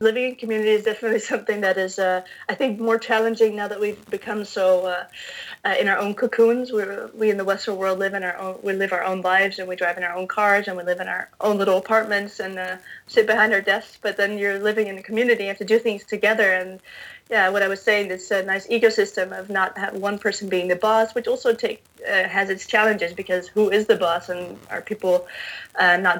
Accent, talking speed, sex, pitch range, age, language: American, 250 wpm, female, 190-225 Hz, 20-39, English